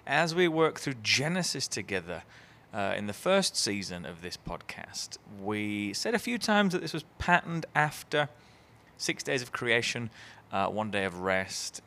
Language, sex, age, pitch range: English, male, 30-49, 100-155 Hz